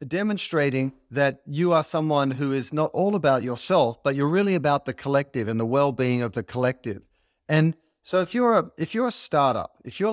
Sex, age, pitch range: male, 40-59, 130-170 Hz